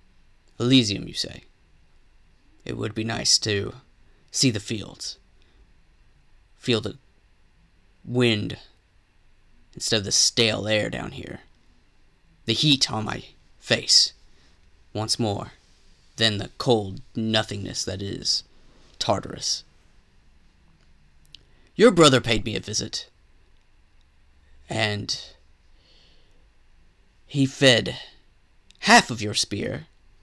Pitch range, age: 90-115 Hz, 30-49